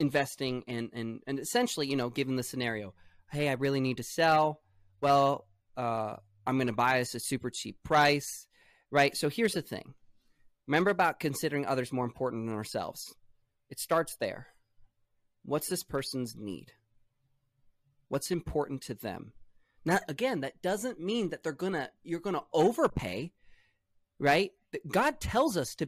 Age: 20-39